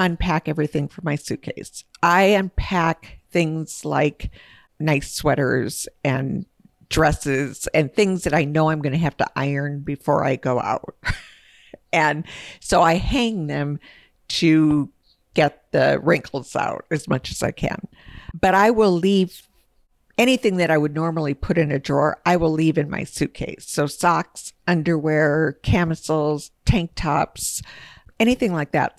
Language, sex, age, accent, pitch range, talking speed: English, female, 50-69, American, 150-185 Hz, 145 wpm